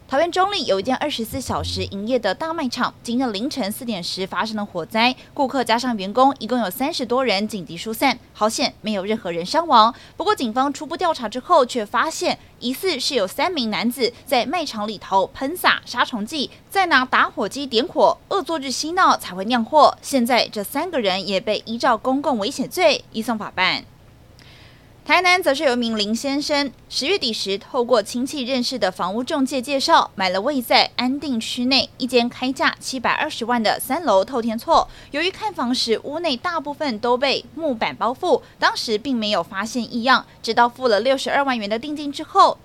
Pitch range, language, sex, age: 220-290 Hz, Chinese, female, 20-39